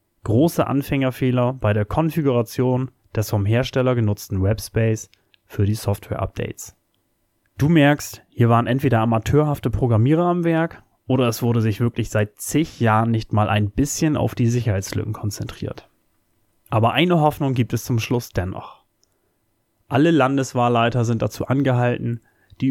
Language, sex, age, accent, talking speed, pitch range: English, male, 30-49, German, 135 wpm, 110-135 Hz